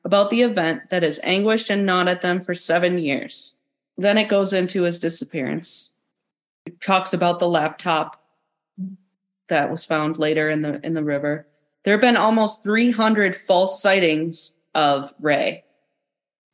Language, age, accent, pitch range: English, 30-49, American, 175-215 Hz